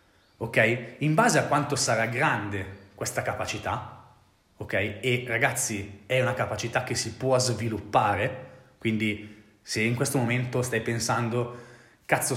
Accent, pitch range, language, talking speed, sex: native, 110-140 Hz, Italian, 130 wpm, male